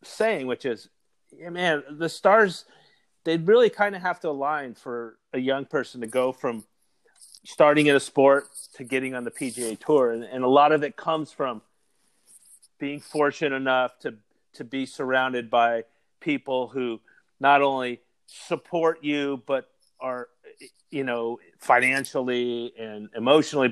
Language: English